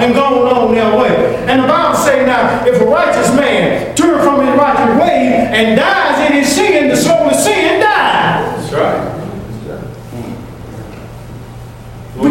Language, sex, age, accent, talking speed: English, male, 50-69, American, 155 wpm